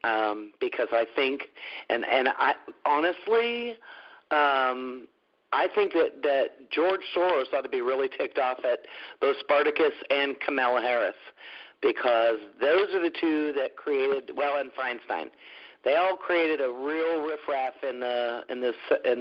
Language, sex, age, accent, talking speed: English, male, 50-69, American, 150 wpm